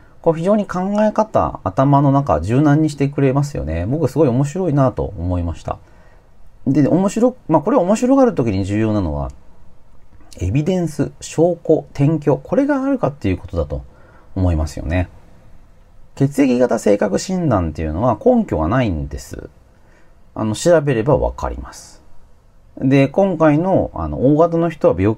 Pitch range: 85-140 Hz